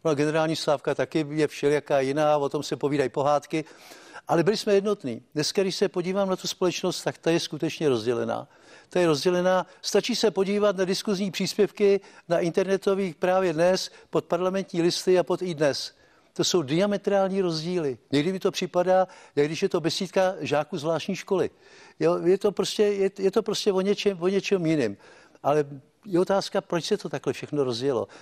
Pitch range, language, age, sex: 150-195 Hz, Czech, 60-79, male